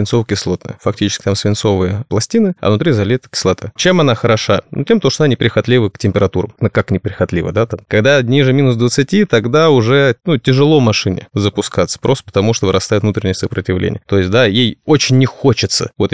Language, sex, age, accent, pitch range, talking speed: Russian, male, 30-49, native, 105-135 Hz, 180 wpm